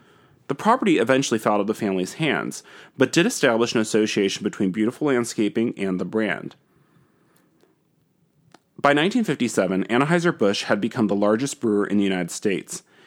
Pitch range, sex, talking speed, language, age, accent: 105-135 Hz, male, 150 wpm, English, 30-49, American